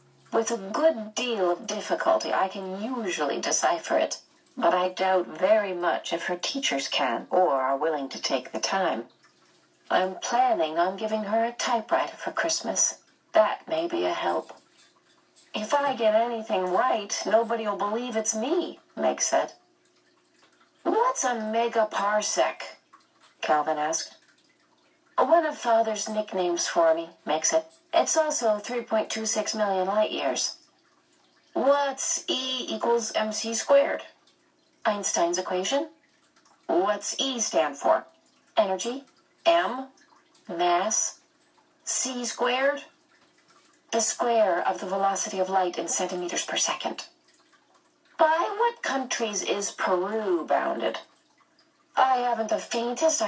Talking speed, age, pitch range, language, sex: 120 wpm, 40-59, 200-305 Hz, English, female